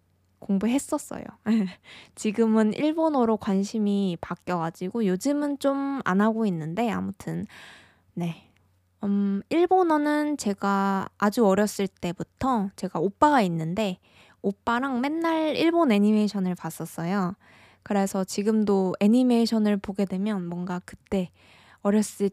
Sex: female